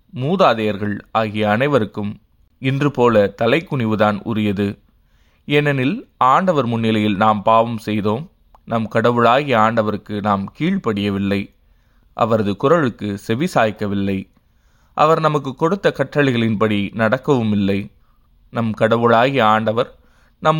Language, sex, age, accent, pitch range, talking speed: Tamil, male, 20-39, native, 105-125 Hz, 90 wpm